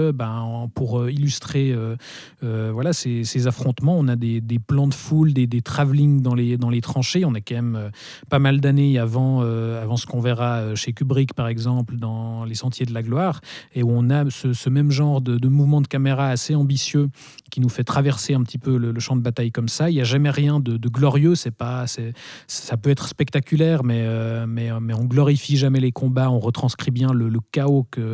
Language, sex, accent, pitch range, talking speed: French, male, French, 120-140 Hz, 230 wpm